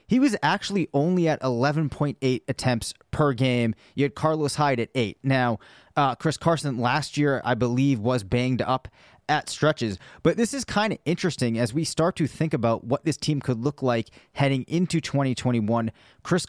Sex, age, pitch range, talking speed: male, 30-49, 120-150 Hz, 180 wpm